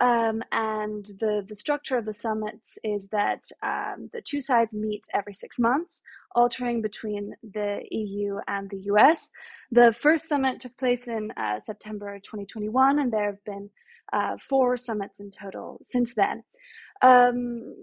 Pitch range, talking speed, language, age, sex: 210-255 Hz, 155 wpm, English, 20-39, female